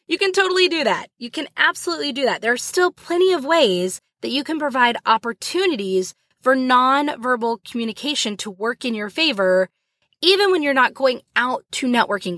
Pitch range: 205-285 Hz